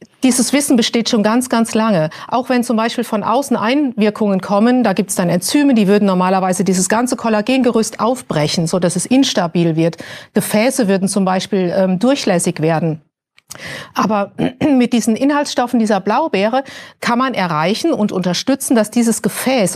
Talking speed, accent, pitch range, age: 160 wpm, German, 195-260 Hz, 40-59